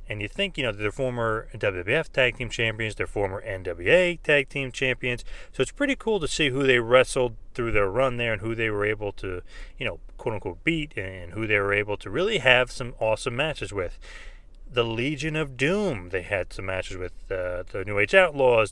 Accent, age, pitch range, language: American, 30-49, 105-130 Hz, English